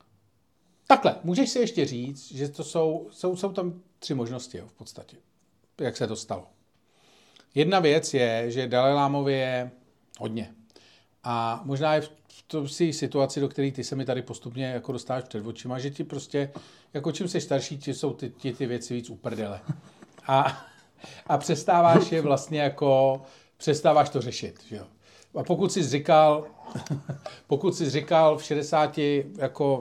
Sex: male